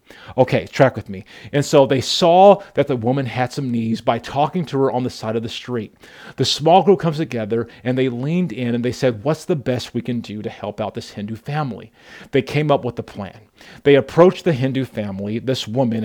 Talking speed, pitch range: 230 wpm, 115-140 Hz